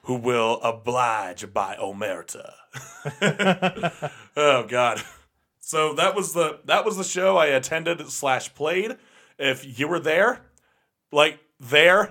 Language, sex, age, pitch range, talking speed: English, male, 30-49, 130-190 Hz, 125 wpm